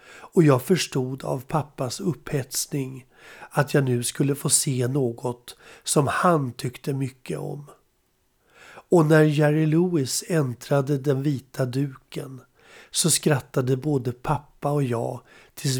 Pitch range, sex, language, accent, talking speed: 125-150 Hz, male, Swedish, native, 125 wpm